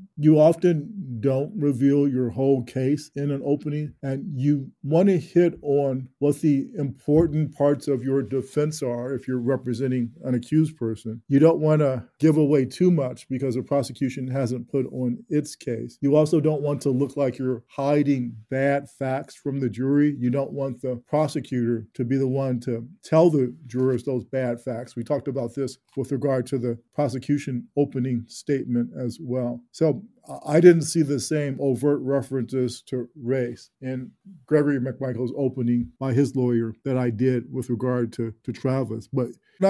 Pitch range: 125-145 Hz